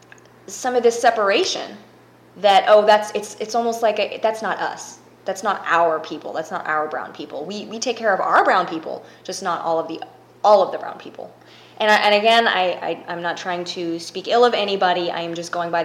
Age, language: 20-39, English